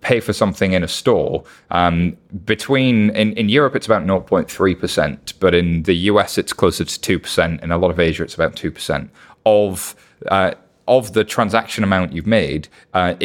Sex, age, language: male, 30-49, English